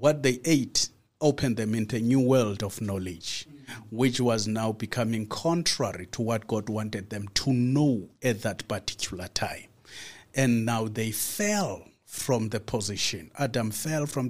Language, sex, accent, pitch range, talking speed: English, male, South African, 115-140 Hz, 155 wpm